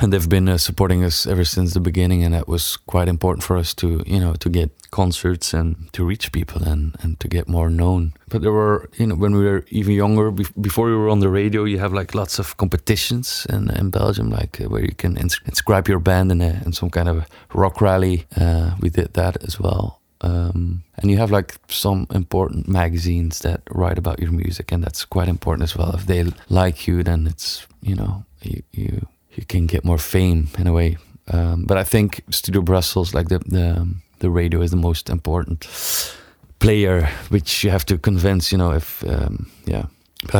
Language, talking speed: Greek, 215 wpm